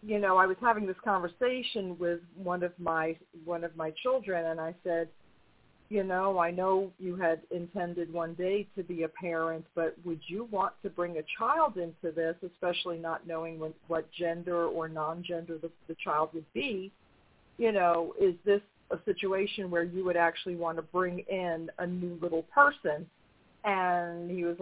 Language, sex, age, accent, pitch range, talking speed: English, female, 40-59, American, 165-195 Hz, 185 wpm